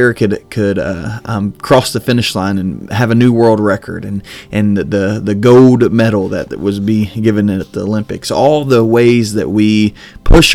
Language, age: English, 30-49